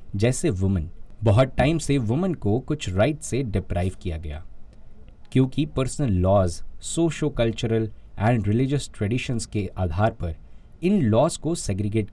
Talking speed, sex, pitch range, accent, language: 140 wpm, male, 95-135 Hz, native, Hindi